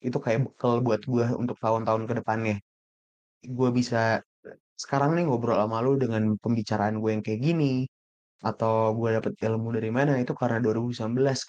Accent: native